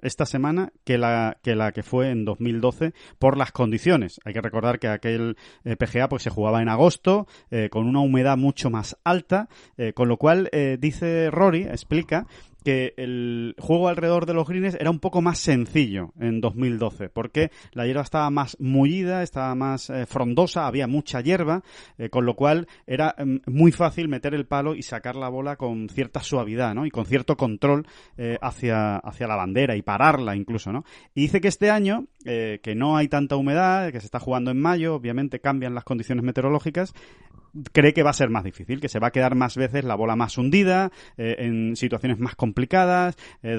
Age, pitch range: 30-49, 120-160 Hz